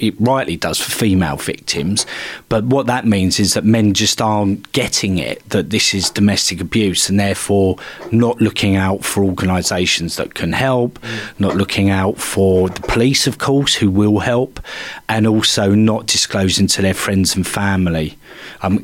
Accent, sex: British, male